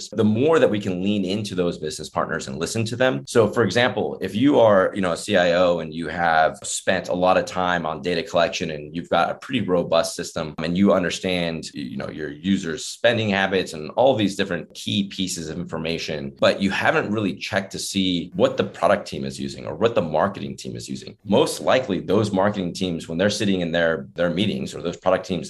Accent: American